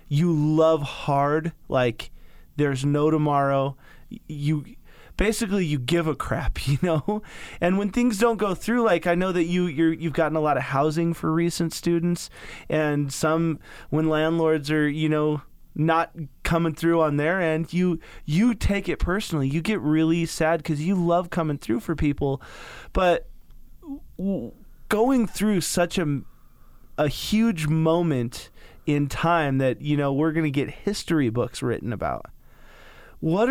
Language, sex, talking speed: English, male, 160 wpm